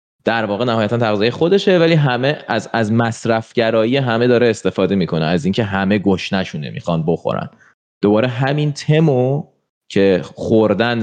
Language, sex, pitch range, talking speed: Persian, male, 95-135 Hz, 140 wpm